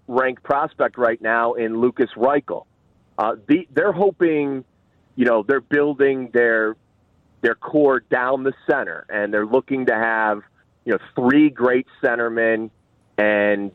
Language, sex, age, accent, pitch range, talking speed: English, male, 30-49, American, 110-140 Hz, 140 wpm